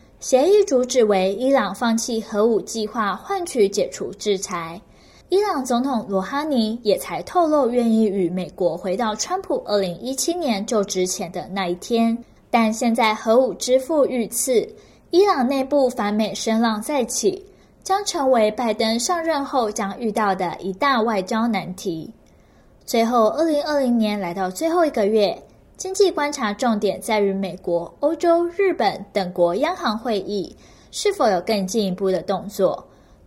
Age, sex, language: 10-29, female, Chinese